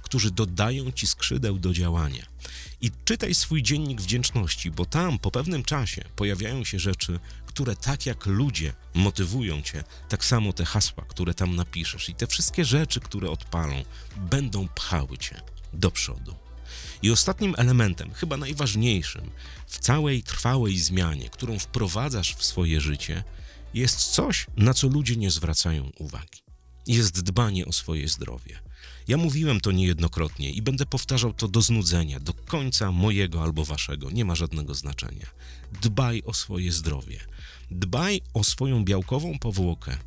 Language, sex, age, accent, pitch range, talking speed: Polish, male, 40-59, native, 75-120 Hz, 145 wpm